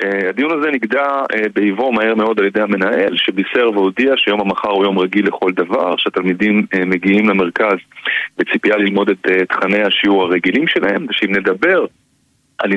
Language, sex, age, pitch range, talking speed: Hebrew, male, 30-49, 95-120 Hz, 145 wpm